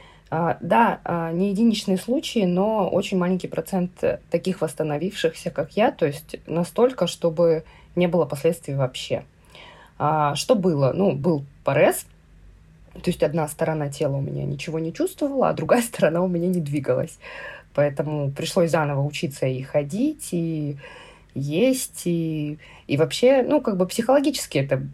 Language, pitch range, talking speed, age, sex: Russian, 150-195 Hz, 140 wpm, 20-39, female